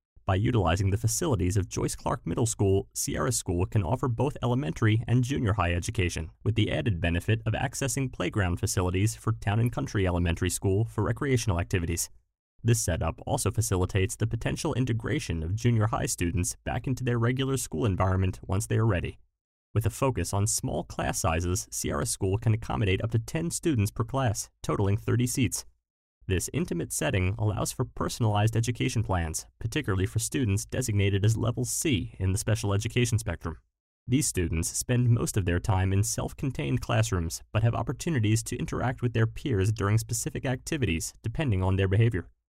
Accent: American